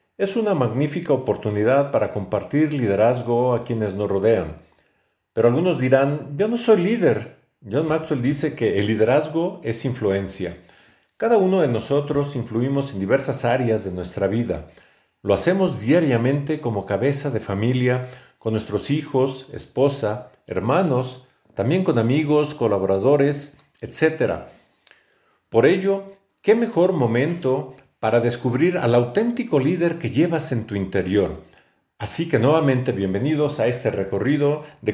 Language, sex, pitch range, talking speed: Spanish, male, 115-150 Hz, 130 wpm